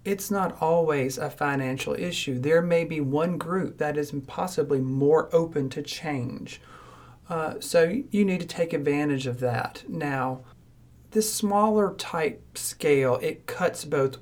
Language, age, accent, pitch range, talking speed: English, 40-59, American, 140-170 Hz, 150 wpm